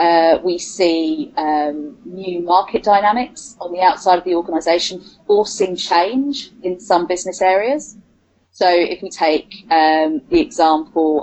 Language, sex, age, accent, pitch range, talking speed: English, female, 30-49, British, 160-210 Hz, 140 wpm